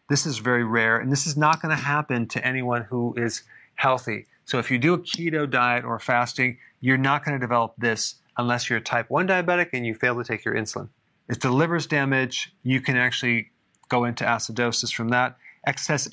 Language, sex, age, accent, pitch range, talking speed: English, male, 30-49, American, 120-135 Hz, 210 wpm